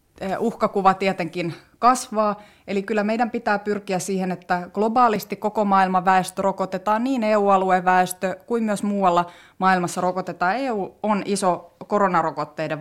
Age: 30-49